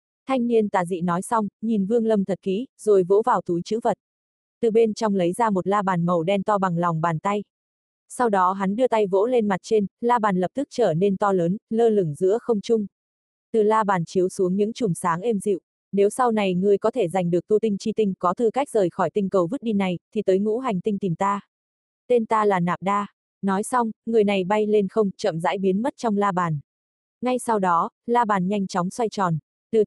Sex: female